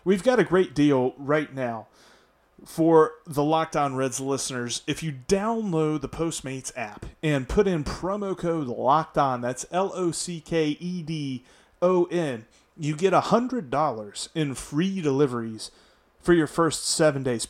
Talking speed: 125 wpm